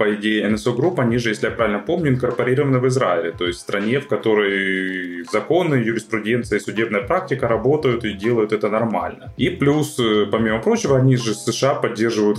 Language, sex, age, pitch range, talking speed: Ukrainian, male, 20-39, 105-140 Hz, 185 wpm